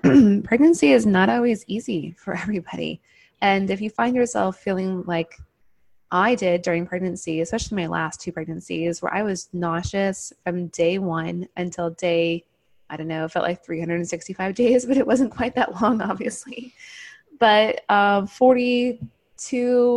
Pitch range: 175-235 Hz